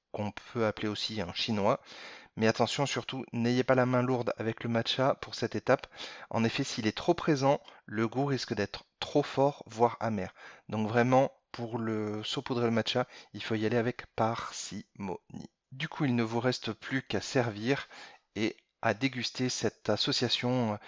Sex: male